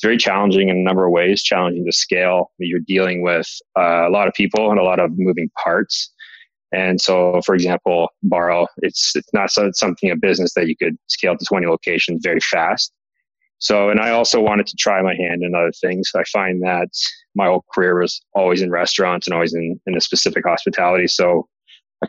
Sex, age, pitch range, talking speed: male, 20-39, 90-100 Hz, 210 wpm